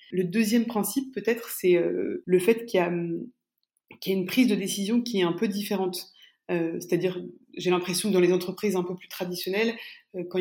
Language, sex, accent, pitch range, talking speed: French, female, French, 180-215 Hz, 185 wpm